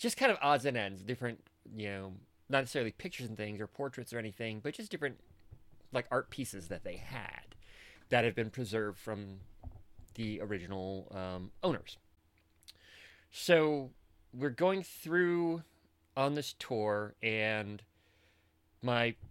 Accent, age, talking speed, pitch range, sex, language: American, 30-49, 140 wpm, 95-130 Hz, male, English